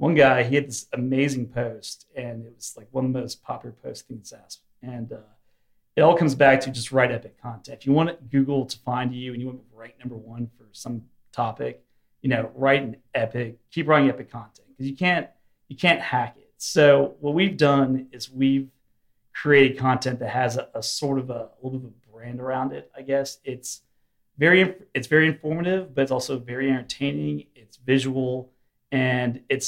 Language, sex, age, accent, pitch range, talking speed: English, male, 30-49, American, 120-135 Hz, 210 wpm